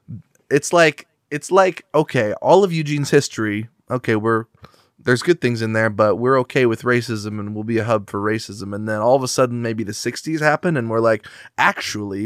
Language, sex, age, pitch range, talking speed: English, male, 20-39, 110-140 Hz, 205 wpm